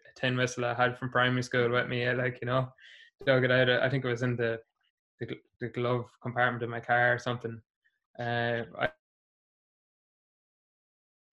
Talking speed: 160 wpm